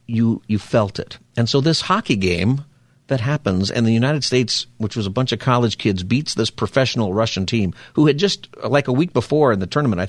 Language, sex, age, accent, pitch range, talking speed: English, male, 50-69, American, 105-140 Hz, 225 wpm